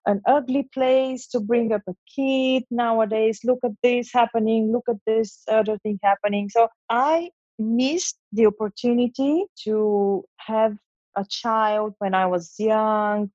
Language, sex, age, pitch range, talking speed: English, female, 30-49, 210-255 Hz, 145 wpm